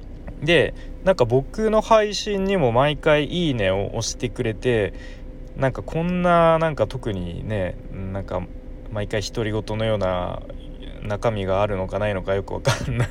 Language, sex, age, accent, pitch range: Japanese, male, 20-39, native, 95-130 Hz